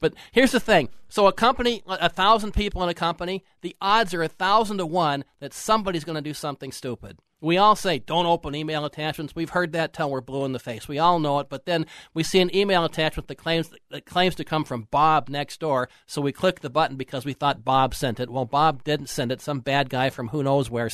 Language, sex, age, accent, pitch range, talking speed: English, male, 50-69, American, 140-175 Hz, 245 wpm